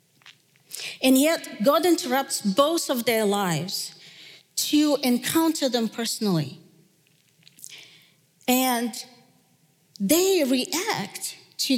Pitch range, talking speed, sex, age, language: 190-275 Hz, 80 wpm, female, 40-59, English